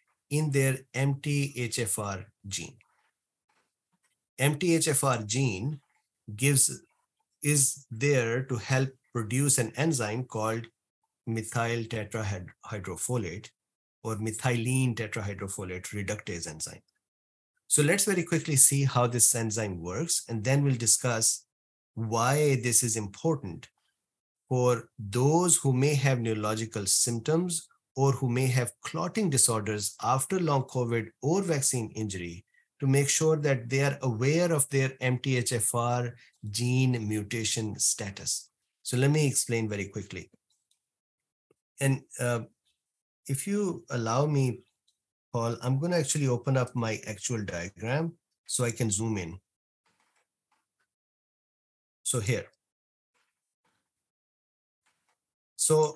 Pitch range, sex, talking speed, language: 110-140 Hz, male, 105 wpm, English